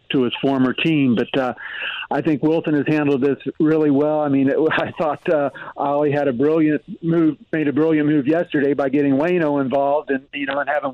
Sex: male